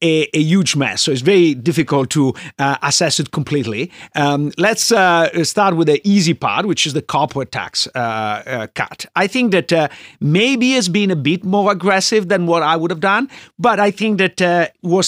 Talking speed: 205 wpm